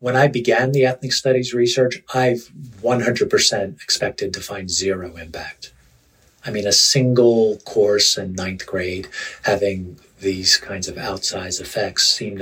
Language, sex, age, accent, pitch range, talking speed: English, male, 40-59, American, 105-145 Hz, 140 wpm